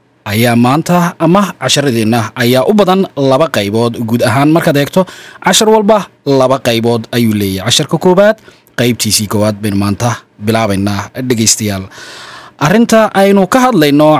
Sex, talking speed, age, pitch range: male, 125 wpm, 30-49, 115-180 Hz